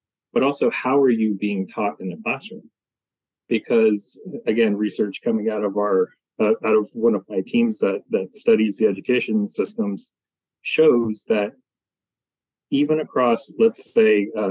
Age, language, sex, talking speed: 30-49, English, male, 155 wpm